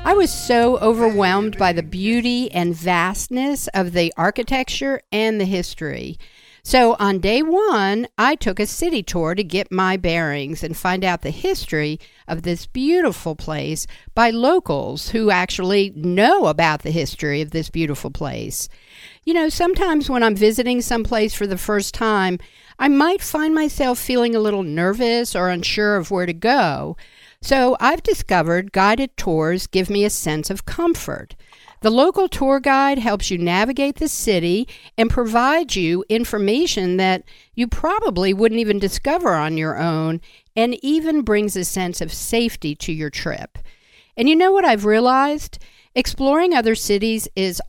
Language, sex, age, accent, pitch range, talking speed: English, female, 50-69, American, 180-250 Hz, 160 wpm